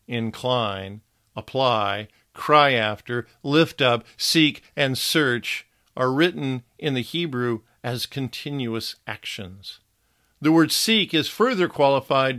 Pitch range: 110-140 Hz